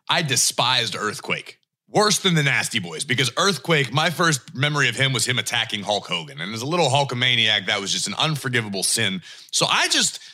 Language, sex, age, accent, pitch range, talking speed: English, male, 30-49, American, 130-180 Hz, 195 wpm